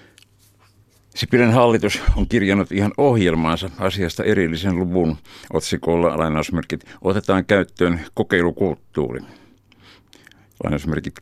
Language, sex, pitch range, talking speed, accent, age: Finnish, male, 85-100 Hz, 80 wpm, native, 60-79